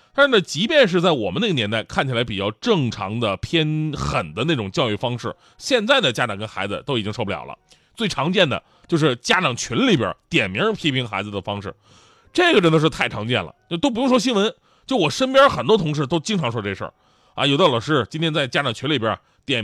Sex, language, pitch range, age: male, Chinese, 125-205 Hz, 30-49